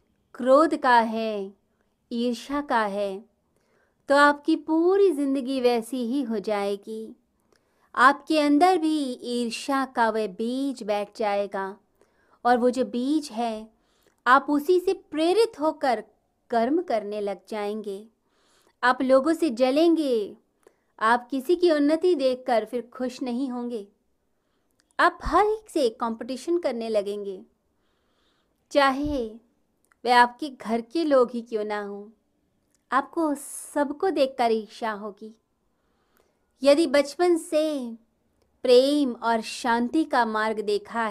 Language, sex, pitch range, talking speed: Hindi, female, 220-290 Hz, 120 wpm